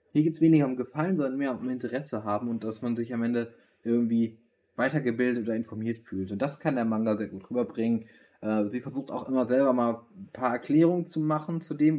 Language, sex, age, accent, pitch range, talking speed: German, male, 20-39, German, 110-140 Hz, 220 wpm